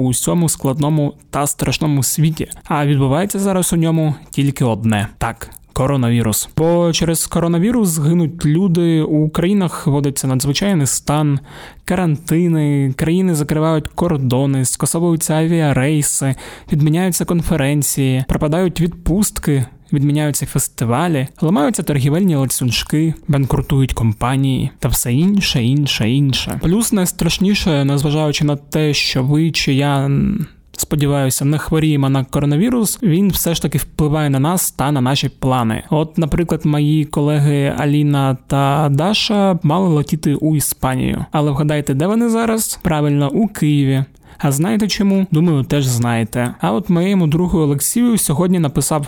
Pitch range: 140-170 Hz